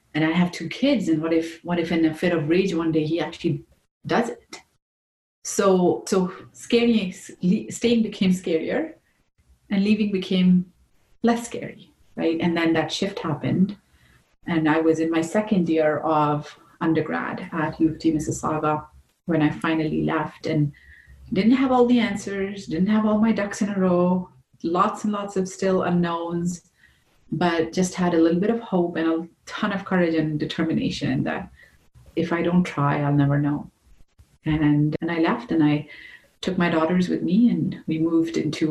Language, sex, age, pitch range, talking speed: English, female, 30-49, 155-185 Hz, 175 wpm